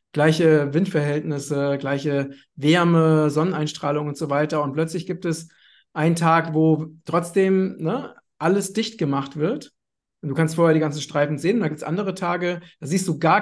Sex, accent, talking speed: male, German, 170 wpm